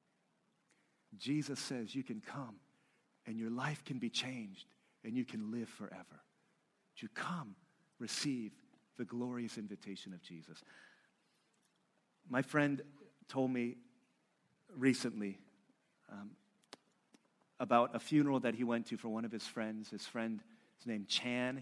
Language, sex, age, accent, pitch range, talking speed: English, male, 40-59, American, 115-135 Hz, 130 wpm